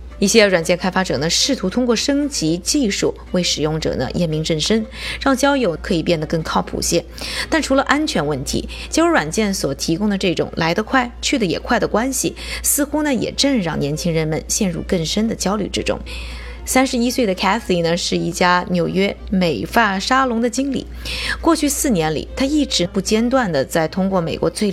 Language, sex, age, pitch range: Chinese, female, 20-39, 170-245 Hz